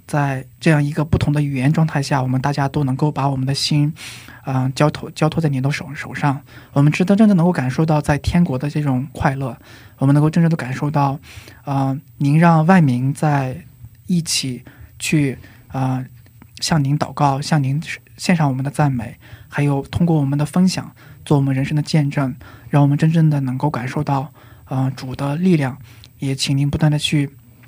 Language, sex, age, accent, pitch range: Korean, male, 20-39, Chinese, 130-155 Hz